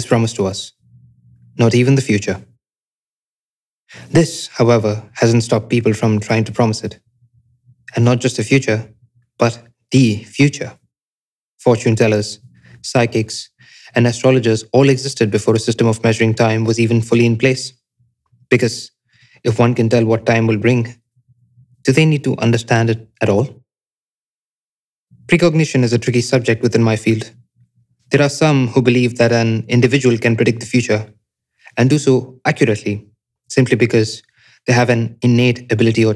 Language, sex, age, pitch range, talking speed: Hindi, male, 20-39, 115-125 Hz, 155 wpm